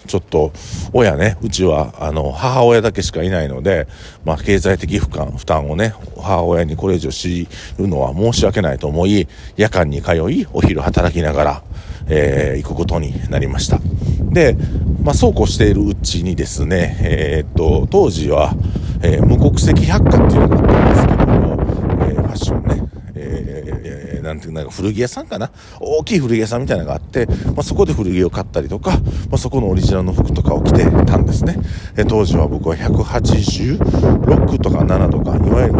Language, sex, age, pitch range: Japanese, male, 50-69, 80-105 Hz